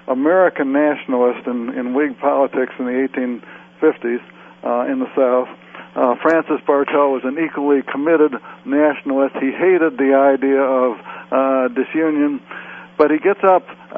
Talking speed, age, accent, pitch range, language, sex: 135 wpm, 60-79, American, 130-155 Hz, English, male